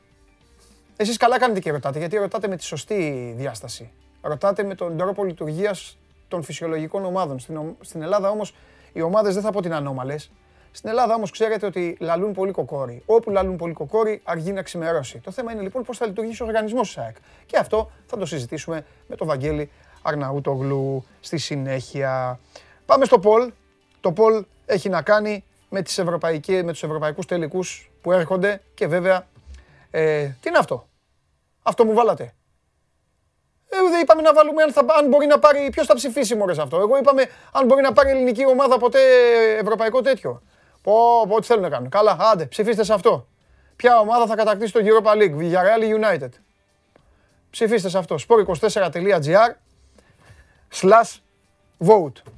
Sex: male